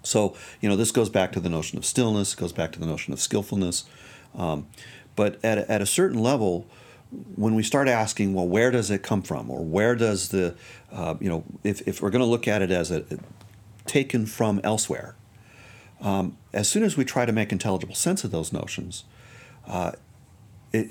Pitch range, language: 95-115 Hz, English